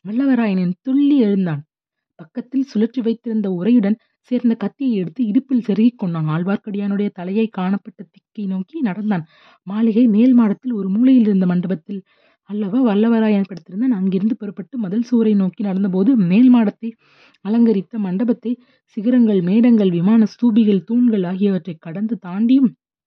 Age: 30-49